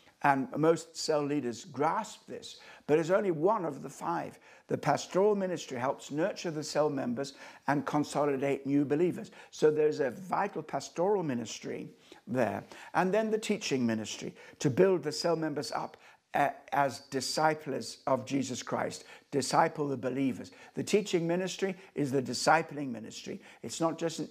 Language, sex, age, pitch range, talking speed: English, male, 60-79, 125-165 Hz, 155 wpm